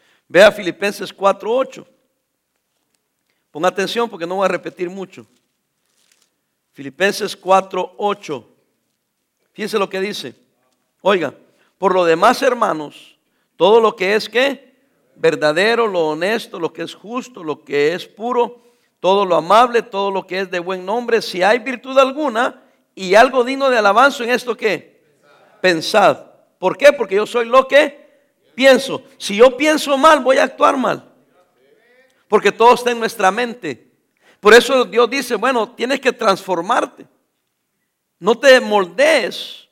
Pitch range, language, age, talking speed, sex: 190-260 Hz, English, 60-79, 140 wpm, male